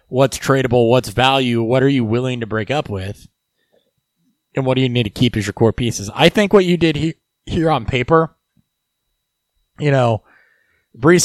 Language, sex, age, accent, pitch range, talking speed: English, male, 20-39, American, 105-130 Hz, 180 wpm